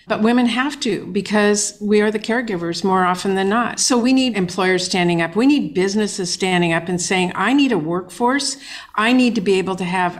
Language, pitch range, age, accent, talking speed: English, 185-240 Hz, 50-69, American, 220 wpm